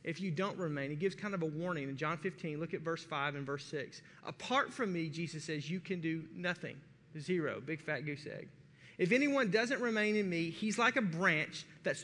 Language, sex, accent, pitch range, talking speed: English, male, American, 155-205 Hz, 225 wpm